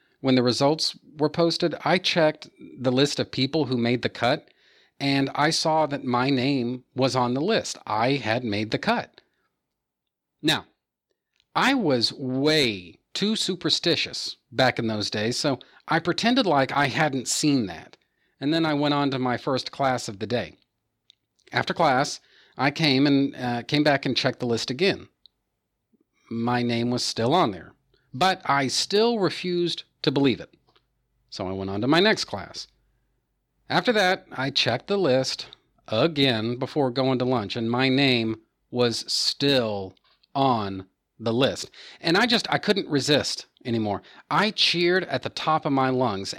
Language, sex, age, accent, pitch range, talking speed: English, male, 40-59, American, 120-155 Hz, 165 wpm